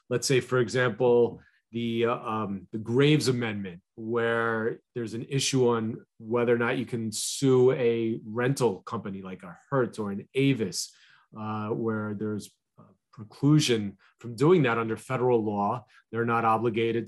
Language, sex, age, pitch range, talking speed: English, male, 30-49, 110-140 Hz, 150 wpm